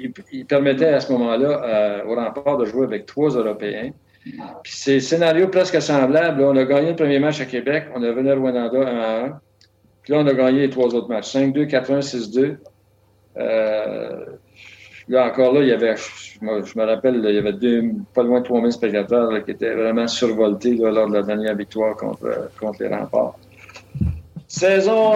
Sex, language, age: male, French, 60-79